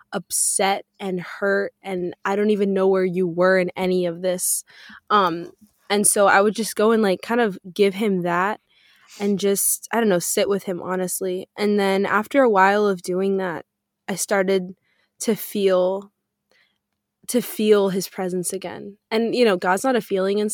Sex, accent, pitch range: female, American, 185-205 Hz